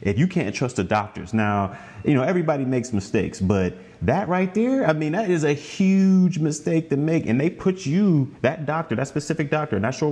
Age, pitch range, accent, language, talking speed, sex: 30-49, 115-155 Hz, American, English, 215 wpm, male